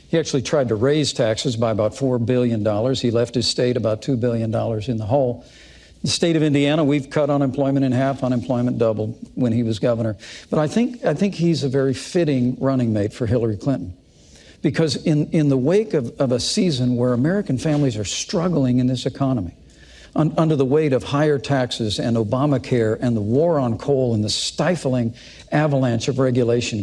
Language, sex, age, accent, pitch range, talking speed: English, male, 60-79, American, 125-160 Hz, 190 wpm